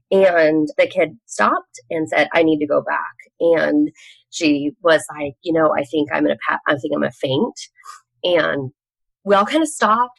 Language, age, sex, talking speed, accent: English, 20-39, female, 170 wpm, American